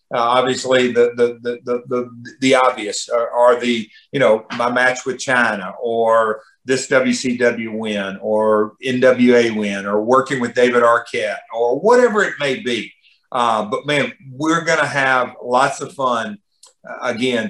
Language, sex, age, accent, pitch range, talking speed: English, male, 50-69, American, 120-140 Hz, 160 wpm